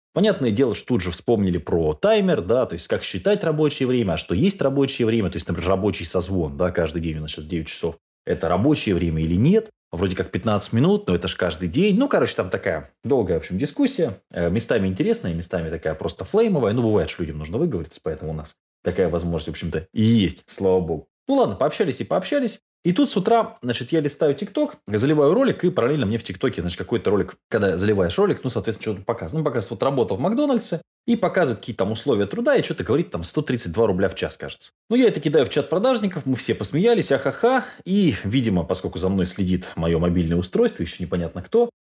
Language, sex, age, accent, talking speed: Russian, male, 20-39, native, 220 wpm